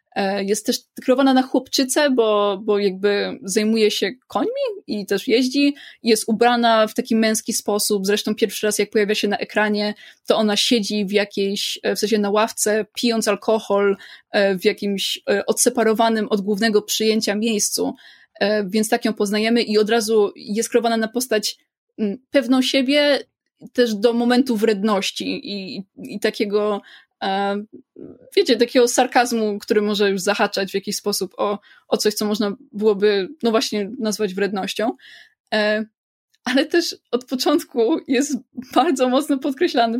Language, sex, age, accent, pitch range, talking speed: Polish, female, 20-39, native, 210-255 Hz, 140 wpm